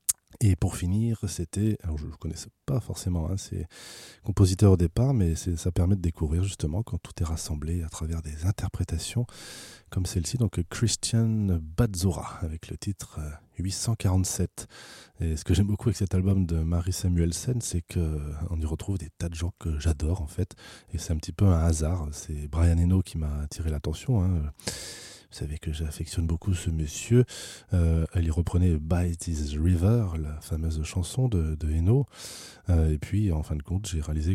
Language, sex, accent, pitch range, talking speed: French, male, French, 80-105 Hz, 185 wpm